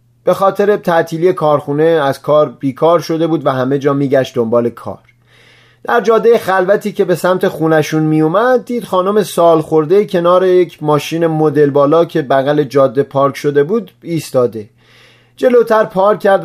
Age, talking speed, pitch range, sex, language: 30-49, 150 wpm, 145-195 Hz, male, Persian